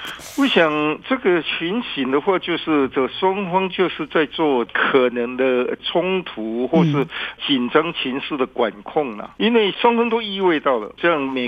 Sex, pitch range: male, 130-175 Hz